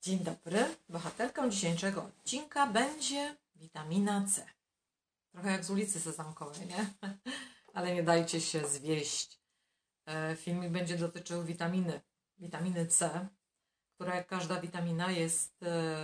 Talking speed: 115 wpm